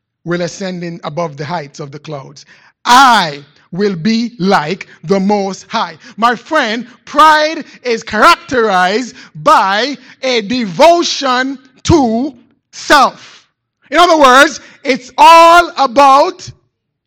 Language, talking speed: English, 110 wpm